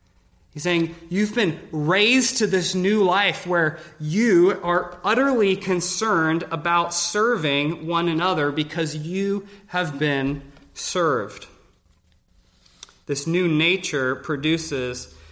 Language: English